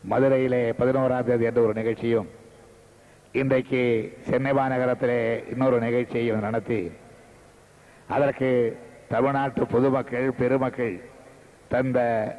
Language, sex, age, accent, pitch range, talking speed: Tamil, male, 60-79, native, 120-135 Hz, 80 wpm